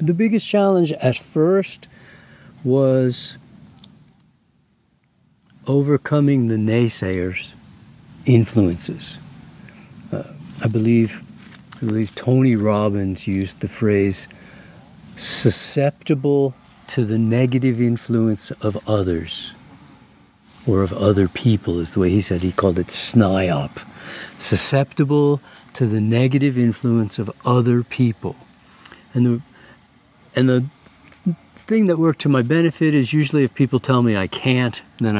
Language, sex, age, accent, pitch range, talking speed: English, male, 50-69, American, 105-145 Hz, 110 wpm